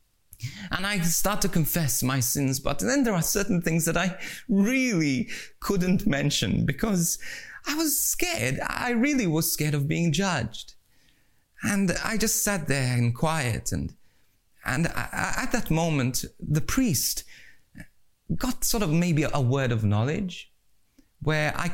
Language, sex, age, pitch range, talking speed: English, male, 30-49, 115-170 Hz, 150 wpm